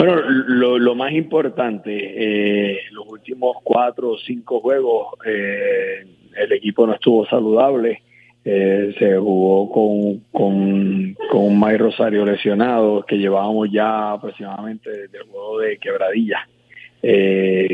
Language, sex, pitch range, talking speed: Spanish, male, 105-125 Hz, 130 wpm